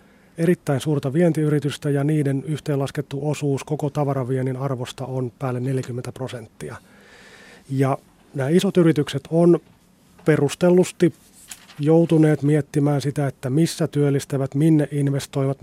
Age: 30-49